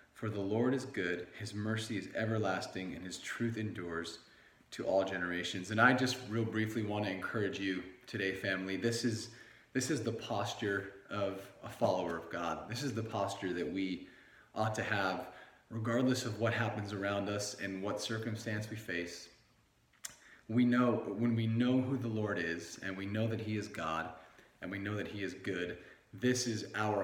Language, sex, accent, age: English, male, American, 30-49